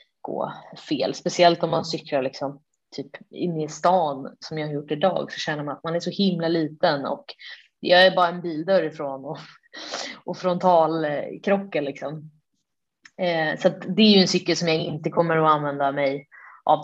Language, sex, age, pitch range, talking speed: Swedish, female, 20-39, 155-190 Hz, 190 wpm